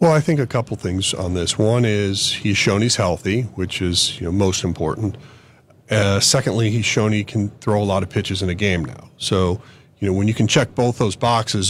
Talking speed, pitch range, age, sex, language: 230 wpm, 100-125 Hz, 40-59, male, English